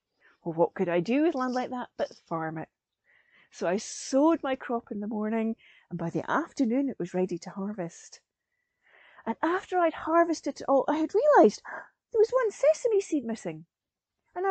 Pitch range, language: 205-335 Hz, English